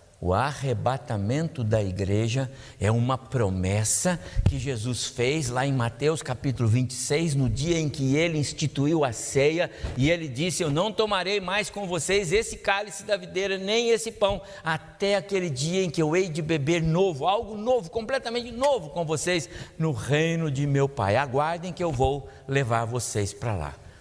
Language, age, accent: Portuguese, 60-79, Brazilian